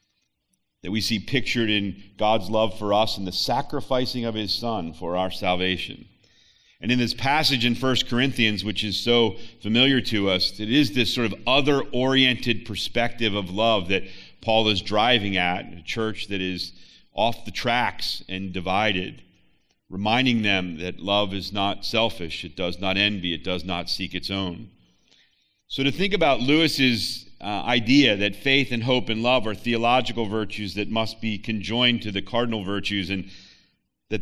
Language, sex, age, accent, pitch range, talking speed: English, male, 40-59, American, 100-120 Hz, 170 wpm